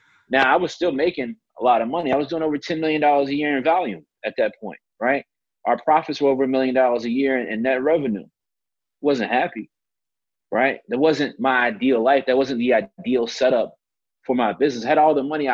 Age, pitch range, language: 30-49, 115-150 Hz, English